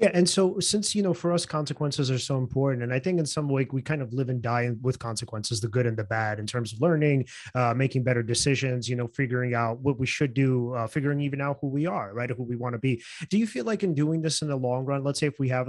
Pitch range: 130-155 Hz